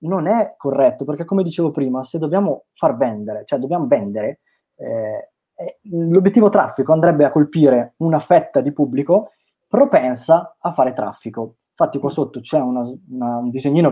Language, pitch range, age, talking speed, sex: Italian, 125-170 Hz, 20-39, 145 wpm, male